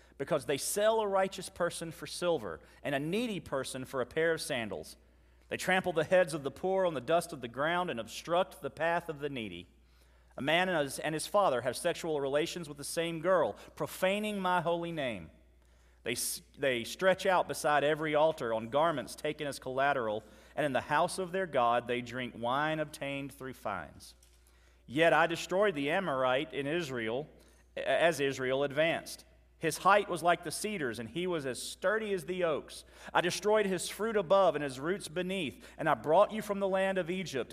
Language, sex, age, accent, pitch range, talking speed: English, male, 40-59, American, 130-185 Hz, 190 wpm